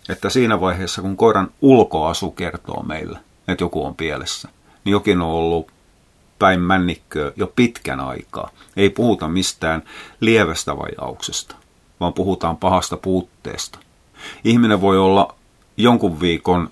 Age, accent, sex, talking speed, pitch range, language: 30-49, native, male, 125 wpm, 85-100 Hz, Finnish